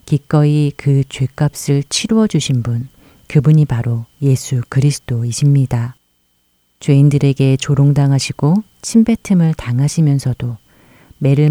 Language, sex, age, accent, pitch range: Korean, female, 40-59, native, 125-150 Hz